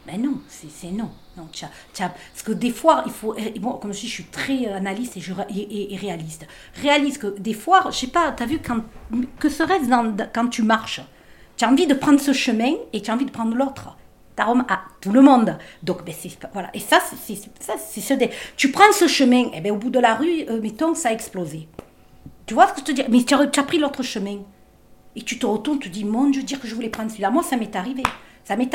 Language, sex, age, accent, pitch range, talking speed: French, female, 50-69, French, 200-285 Hz, 275 wpm